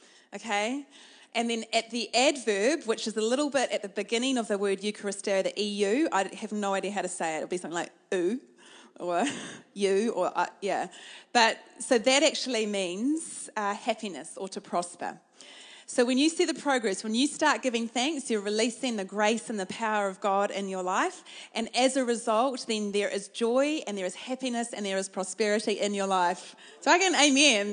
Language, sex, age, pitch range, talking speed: English, female, 30-49, 210-280 Hz, 205 wpm